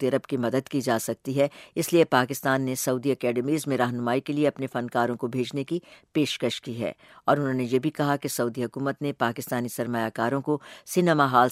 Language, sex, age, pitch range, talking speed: English, female, 60-79, 125-150 Hz, 190 wpm